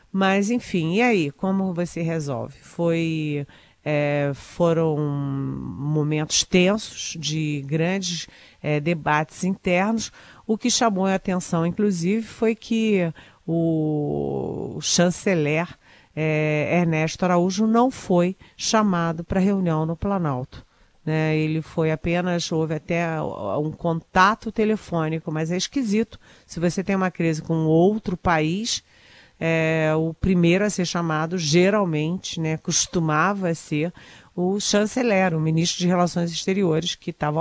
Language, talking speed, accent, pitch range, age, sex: Portuguese, 115 wpm, Brazilian, 155-185 Hz, 40-59, female